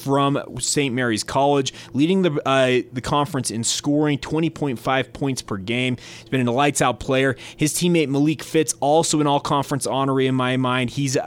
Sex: male